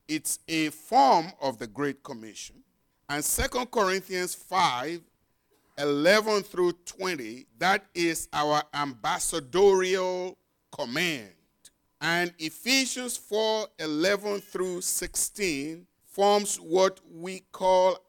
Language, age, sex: English, 50-69, male